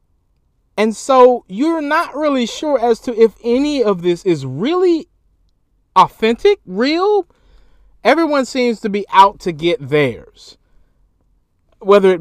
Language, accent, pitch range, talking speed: English, American, 150-245 Hz, 130 wpm